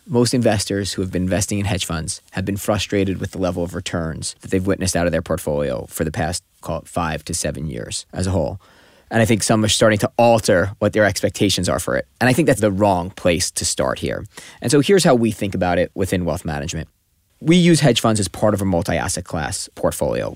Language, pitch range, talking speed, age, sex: English, 90-110 Hz, 235 wpm, 20-39, male